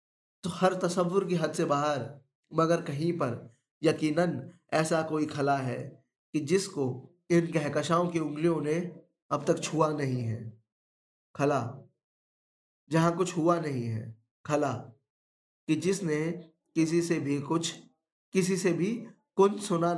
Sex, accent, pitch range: male, native, 135-170 Hz